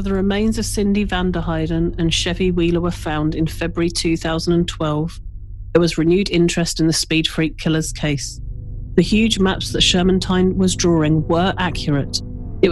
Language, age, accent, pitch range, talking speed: English, 40-59, British, 145-180 Hz, 160 wpm